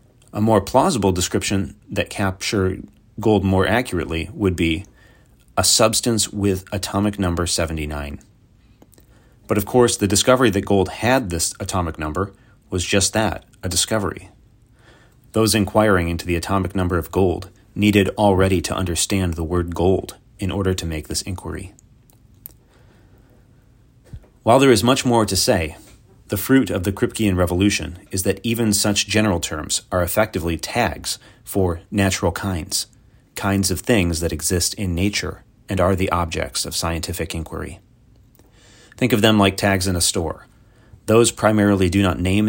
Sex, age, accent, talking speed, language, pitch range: male, 30-49, American, 150 wpm, English, 90-110 Hz